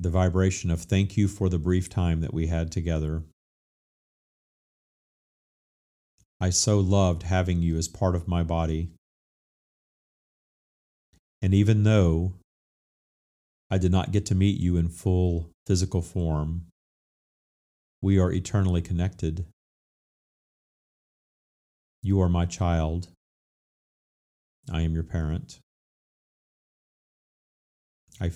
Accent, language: American, English